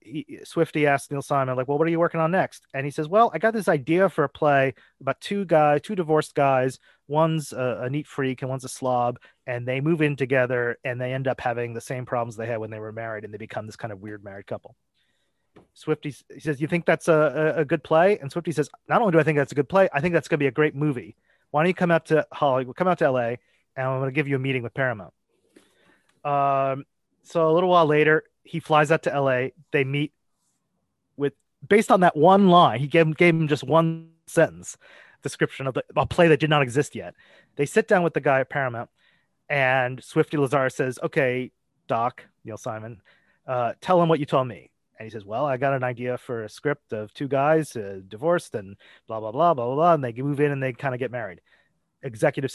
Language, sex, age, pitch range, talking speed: English, male, 30-49, 125-160 Hz, 240 wpm